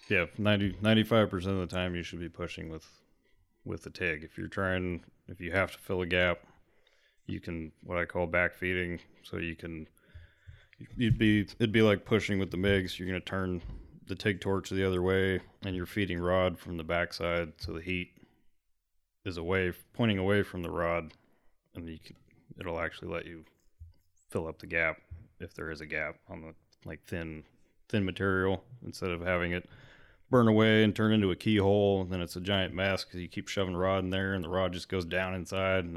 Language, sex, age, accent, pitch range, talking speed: English, male, 30-49, American, 85-100 Hz, 210 wpm